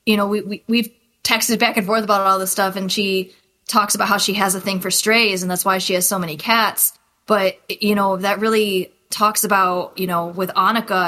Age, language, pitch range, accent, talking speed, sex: 20-39, English, 175-200 Hz, American, 240 wpm, female